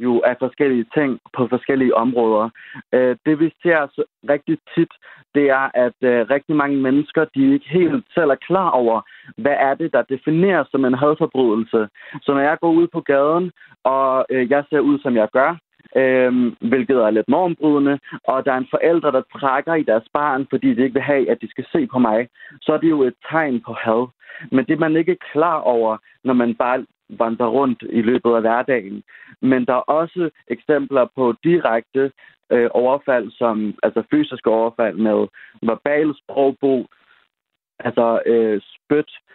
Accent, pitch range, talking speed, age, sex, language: native, 120-150 Hz, 175 wpm, 30-49, male, Danish